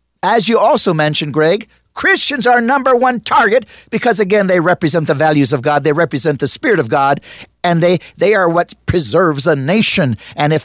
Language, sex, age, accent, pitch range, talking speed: English, male, 50-69, American, 120-170 Hz, 190 wpm